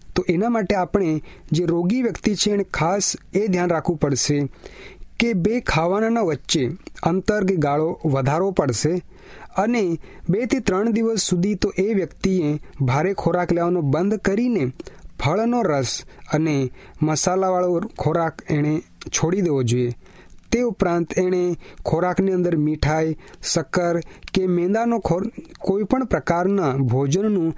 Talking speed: 110 wpm